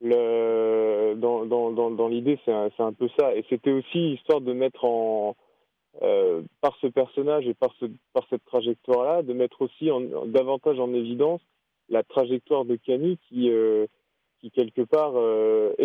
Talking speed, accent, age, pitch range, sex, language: 180 wpm, French, 20-39, 115-165 Hz, male, French